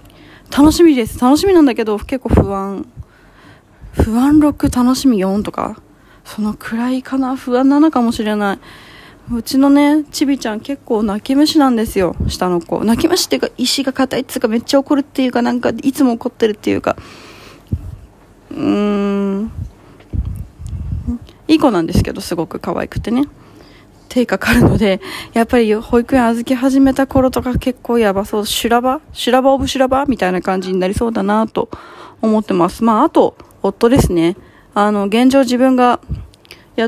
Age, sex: 20-39, female